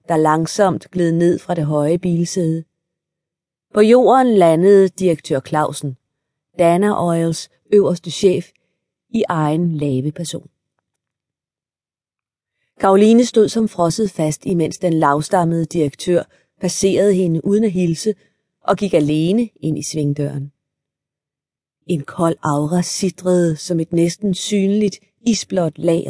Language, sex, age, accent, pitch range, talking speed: Danish, female, 30-49, native, 155-185 Hz, 115 wpm